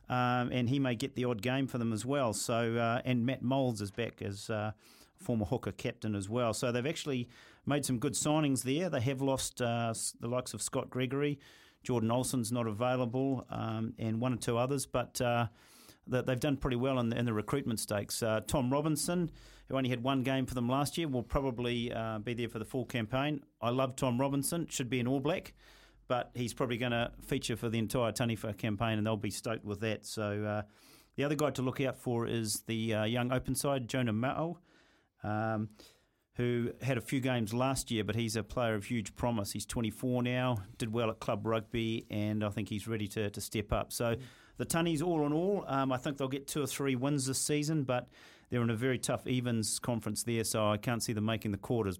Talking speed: 225 wpm